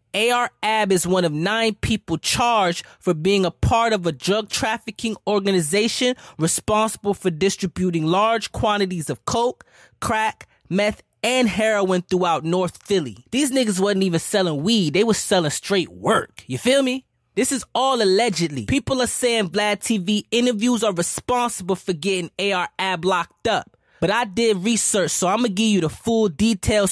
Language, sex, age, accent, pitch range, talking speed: English, male, 20-39, American, 180-235 Hz, 165 wpm